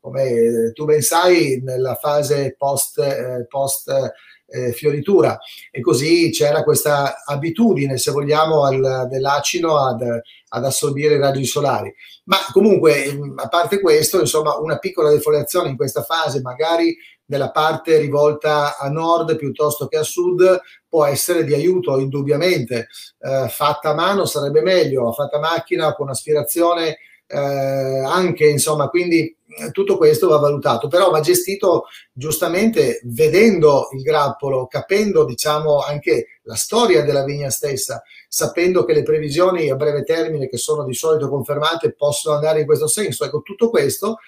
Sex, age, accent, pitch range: male, 30-49, native, 140-170 Hz